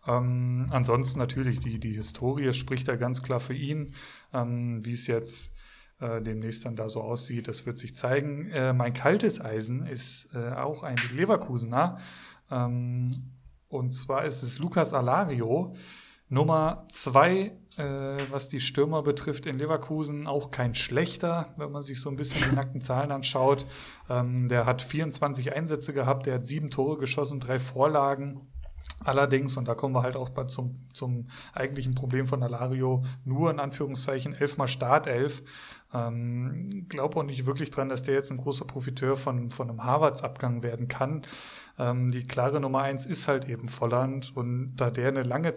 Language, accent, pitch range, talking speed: German, German, 125-140 Hz, 170 wpm